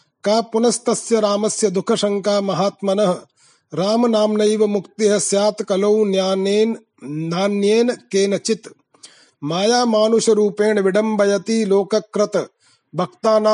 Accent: native